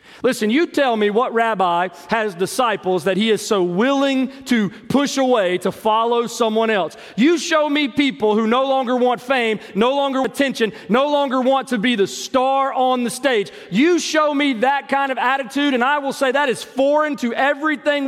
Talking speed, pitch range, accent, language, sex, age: 195 wpm, 190-280 Hz, American, English, male, 40-59